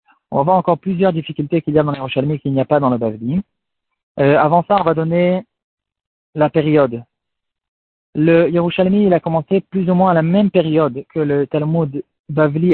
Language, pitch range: French, 135-170 Hz